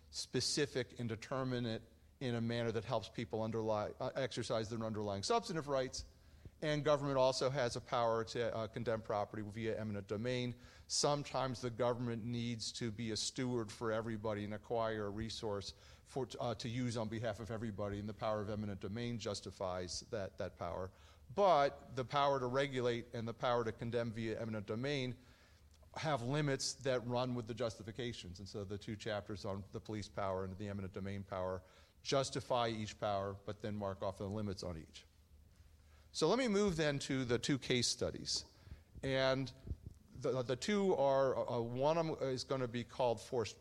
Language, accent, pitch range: English, American, 100-130 Hz